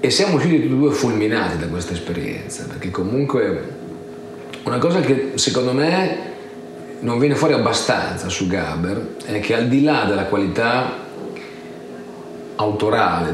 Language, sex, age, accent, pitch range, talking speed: Italian, male, 40-59, native, 90-135 Hz, 140 wpm